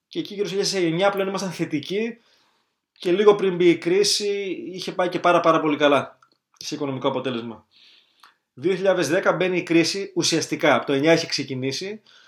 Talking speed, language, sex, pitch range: 170 wpm, Greek, male, 145-190 Hz